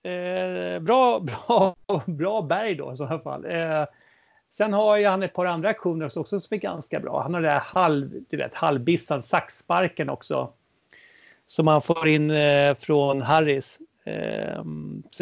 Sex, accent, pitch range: male, Swedish, 145-195 Hz